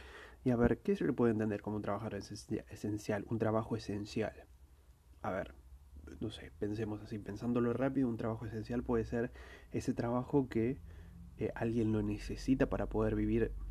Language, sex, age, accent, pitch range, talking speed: Spanish, male, 30-49, Argentinian, 100-120 Hz, 165 wpm